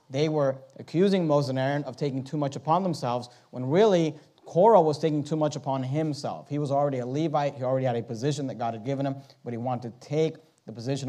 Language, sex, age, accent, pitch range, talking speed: English, male, 40-59, American, 125-150 Hz, 235 wpm